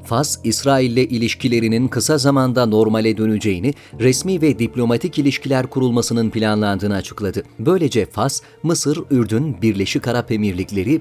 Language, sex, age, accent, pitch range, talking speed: Turkish, male, 40-59, native, 110-135 Hz, 120 wpm